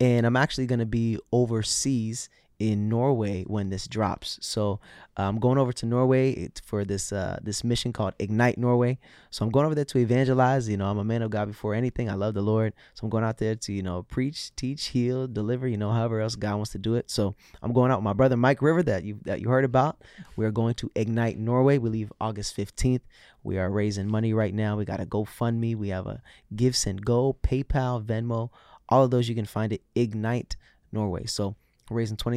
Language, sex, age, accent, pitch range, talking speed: English, male, 20-39, American, 105-125 Hz, 220 wpm